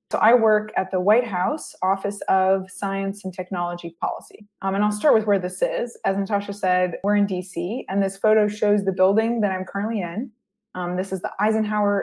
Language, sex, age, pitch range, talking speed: English, female, 20-39, 185-220 Hz, 210 wpm